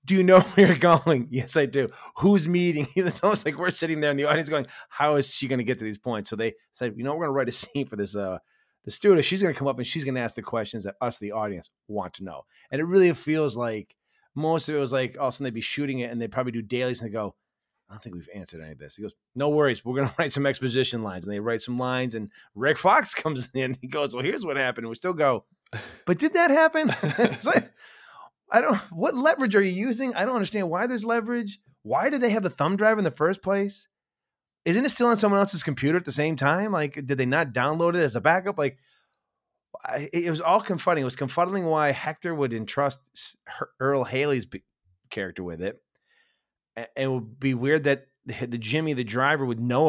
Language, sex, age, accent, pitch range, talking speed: English, male, 30-49, American, 120-170 Hz, 255 wpm